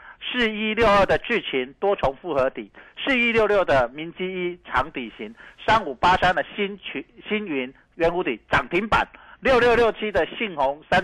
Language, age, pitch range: Chinese, 50-69, 140-215 Hz